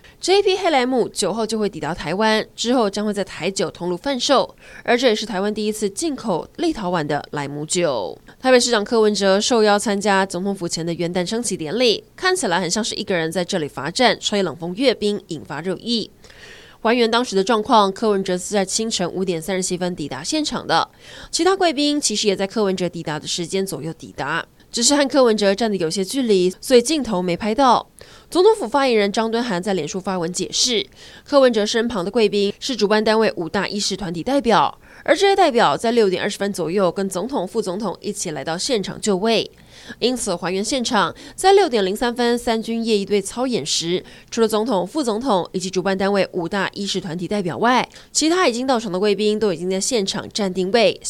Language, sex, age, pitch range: Chinese, female, 20-39, 185-235 Hz